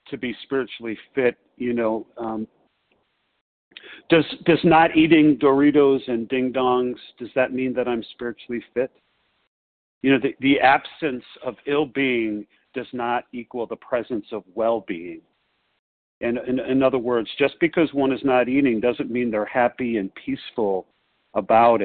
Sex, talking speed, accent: male, 145 wpm, American